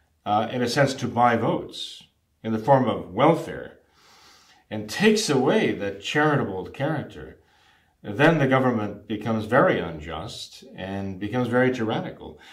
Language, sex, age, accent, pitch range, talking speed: English, male, 40-59, American, 105-135 Hz, 135 wpm